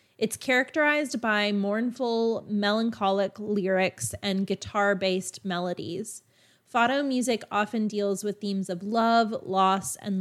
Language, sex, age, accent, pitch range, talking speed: English, female, 30-49, American, 195-230 Hz, 110 wpm